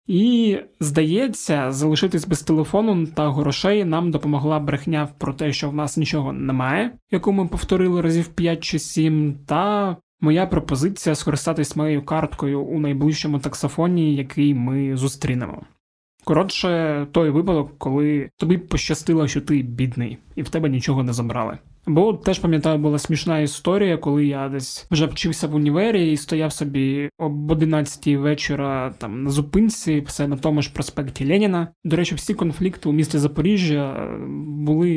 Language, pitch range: Ukrainian, 145-175 Hz